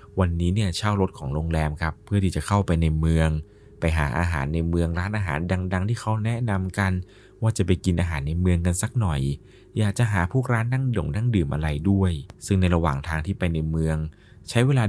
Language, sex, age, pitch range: Thai, male, 20-39, 80-105 Hz